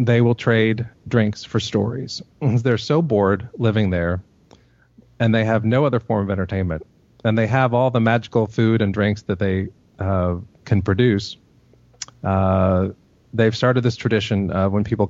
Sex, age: male, 30-49